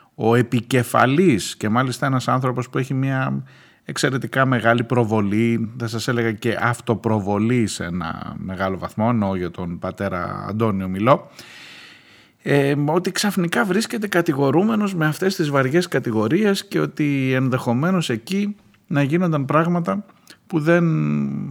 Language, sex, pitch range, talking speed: Greek, male, 110-170 Hz, 125 wpm